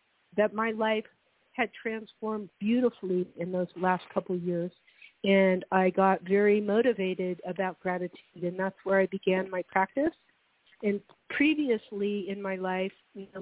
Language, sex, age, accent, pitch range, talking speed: English, female, 50-69, American, 190-215 Hz, 140 wpm